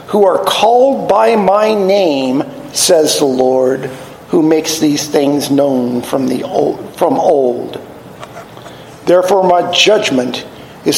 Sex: male